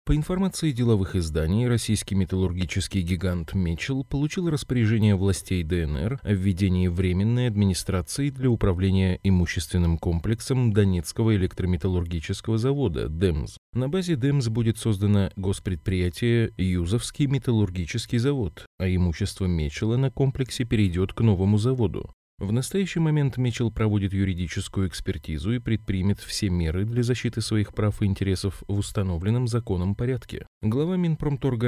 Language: Russian